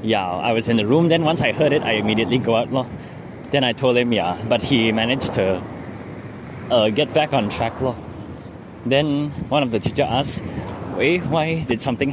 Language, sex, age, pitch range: English, male, 20-39, 105-130 Hz